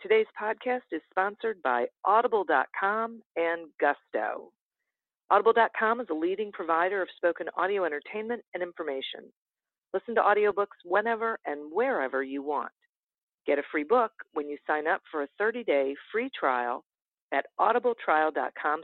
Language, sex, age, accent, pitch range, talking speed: English, female, 50-69, American, 155-235 Hz, 135 wpm